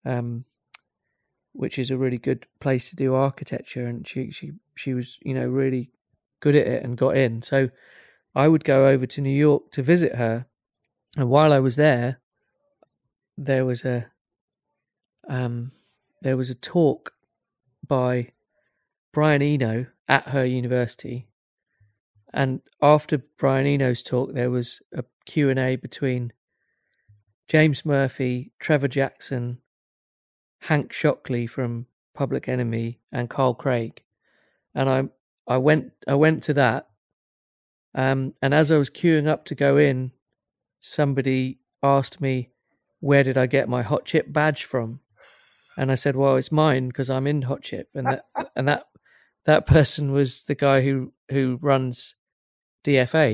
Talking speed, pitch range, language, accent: 150 wpm, 125-145 Hz, English, British